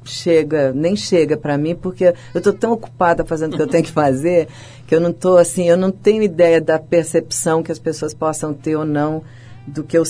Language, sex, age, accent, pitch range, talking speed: Portuguese, female, 50-69, Brazilian, 150-190 Hz, 225 wpm